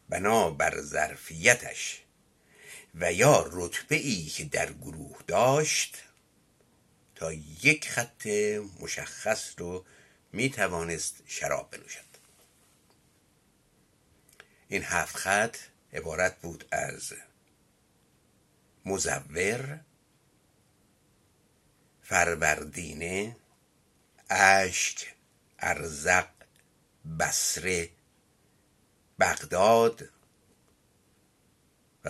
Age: 60-79